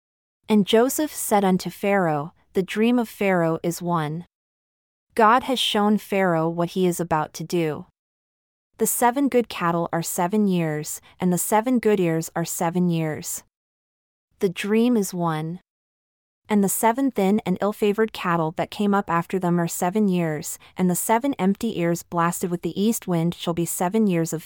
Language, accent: English, American